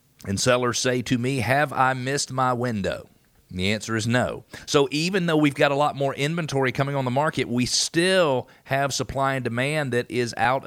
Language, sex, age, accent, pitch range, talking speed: English, male, 40-59, American, 120-145 Hz, 200 wpm